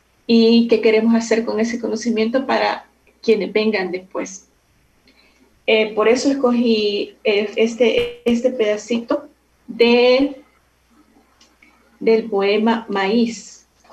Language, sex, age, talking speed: Spanish, female, 30-49, 90 wpm